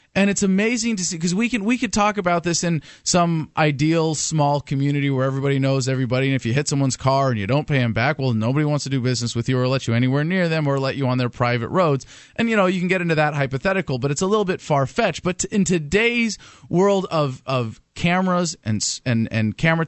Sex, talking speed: male, 250 wpm